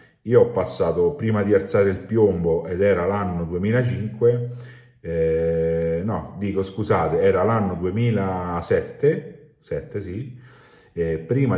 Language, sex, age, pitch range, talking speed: Italian, male, 40-59, 85-105 Hz, 120 wpm